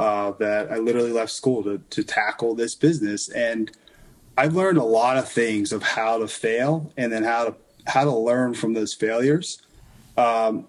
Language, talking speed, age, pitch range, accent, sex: English, 180 wpm, 30-49, 110-140 Hz, American, male